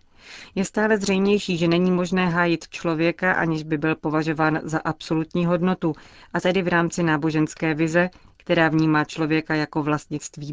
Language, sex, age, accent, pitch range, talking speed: Czech, female, 30-49, native, 155-175 Hz, 150 wpm